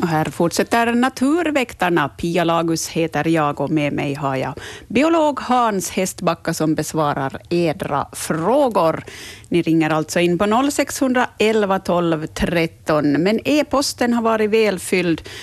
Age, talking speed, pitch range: 30-49, 130 wpm, 160-225 Hz